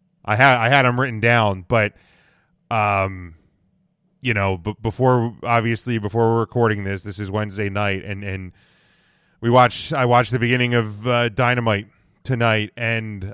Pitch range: 100-125 Hz